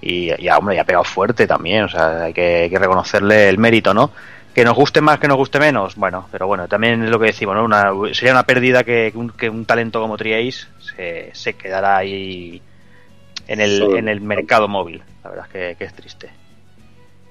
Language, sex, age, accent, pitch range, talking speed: Spanish, male, 30-49, Spanish, 100-130 Hz, 210 wpm